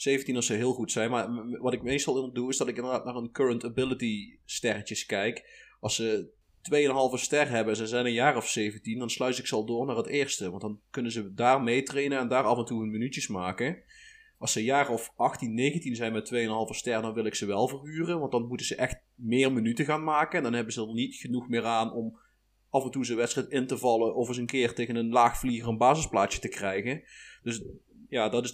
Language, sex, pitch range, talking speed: Dutch, male, 110-130 Hz, 245 wpm